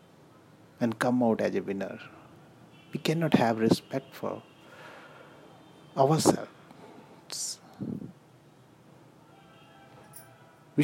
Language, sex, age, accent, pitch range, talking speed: English, male, 50-69, Indian, 115-160 Hz, 70 wpm